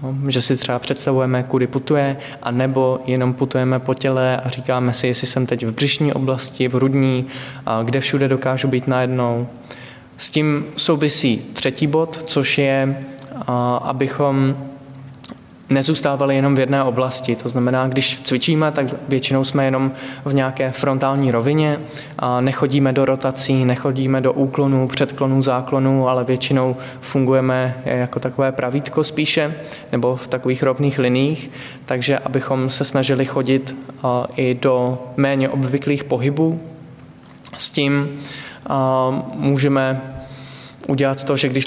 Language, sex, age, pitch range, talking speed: Czech, male, 20-39, 130-140 Hz, 130 wpm